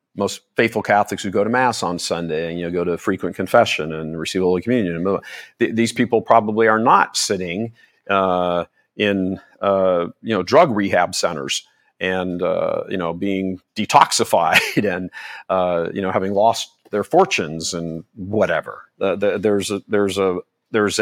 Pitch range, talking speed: 90-115 Hz, 160 wpm